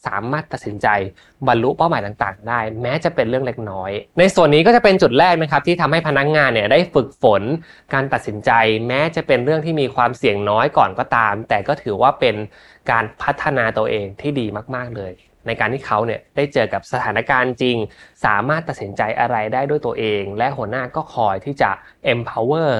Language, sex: Thai, male